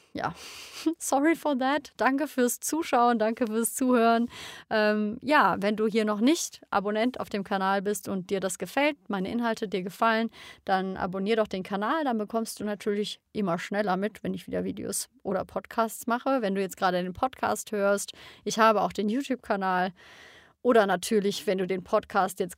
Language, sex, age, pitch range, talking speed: German, female, 30-49, 200-250 Hz, 180 wpm